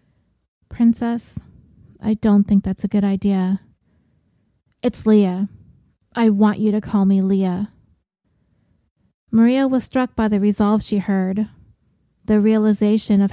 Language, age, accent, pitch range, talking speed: English, 30-49, American, 200-220 Hz, 125 wpm